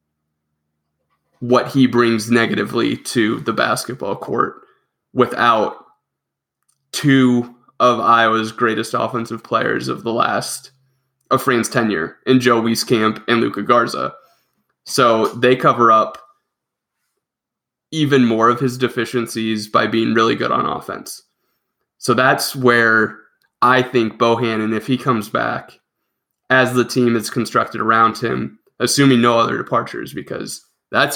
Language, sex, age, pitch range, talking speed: English, male, 20-39, 110-130 Hz, 125 wpm